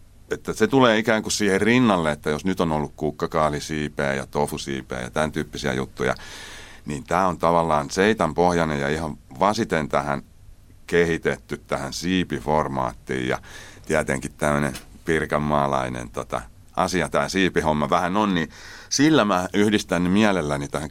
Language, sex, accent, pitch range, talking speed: Finnish, male, native, 70-90 Hz, 140 wpm